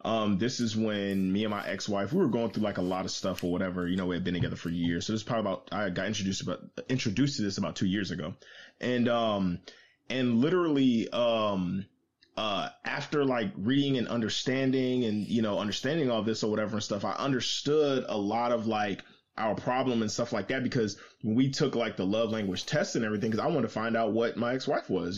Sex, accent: male, American